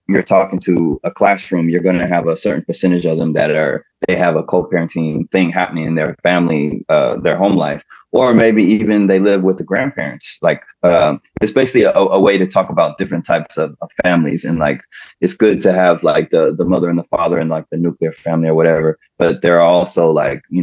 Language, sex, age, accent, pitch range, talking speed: English, male, 20-39, American, 85-95 Hz, 225 wpm